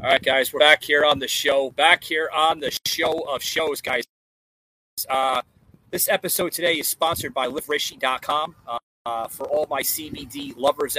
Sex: male